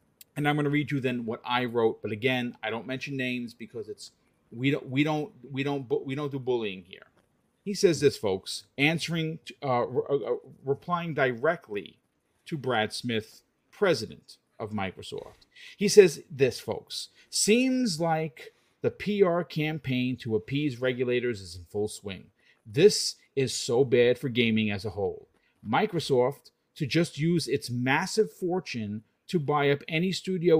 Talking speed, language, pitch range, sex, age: 160 wpm, English, 120-170 Hz, male, 40-59